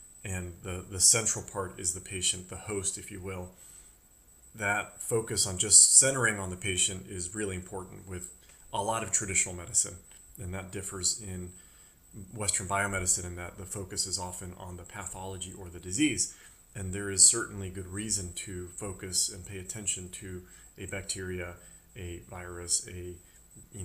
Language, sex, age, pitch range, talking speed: English, male, 30-49, 90-105 Hz, 165 wpm